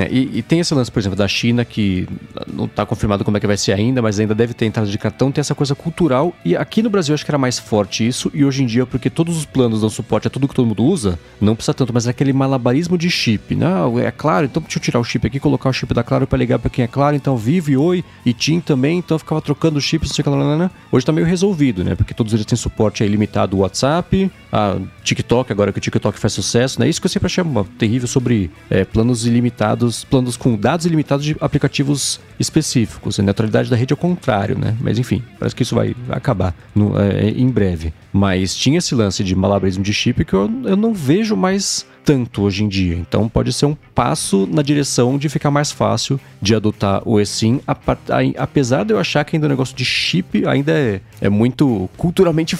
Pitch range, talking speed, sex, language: 110-150 Hz, 240 wpm, male, Portuguese